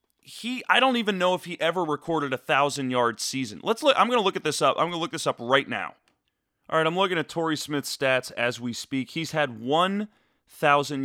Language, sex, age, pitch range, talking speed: English, male, 30-49, 130-170 Hz, 235 wpm